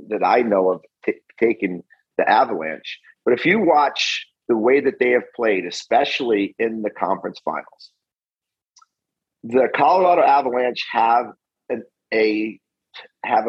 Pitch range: 110-150 Hz